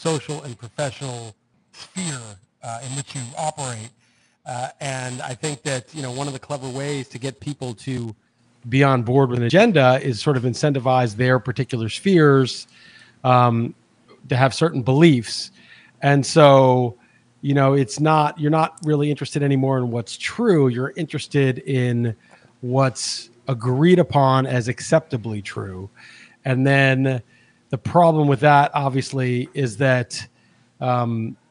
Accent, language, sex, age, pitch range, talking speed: American, English, male, 40-59, 125-150 Hz, 145 wpm